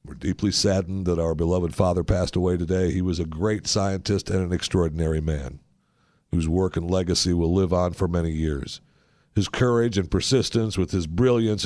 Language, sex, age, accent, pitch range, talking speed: English, male, 60-79, American, 85-115 Hz, 185 wpm